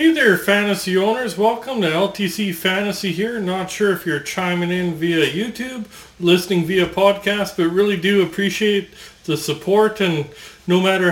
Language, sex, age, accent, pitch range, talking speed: English, male, 40-59, American, 170-210 Hz, 155 wpm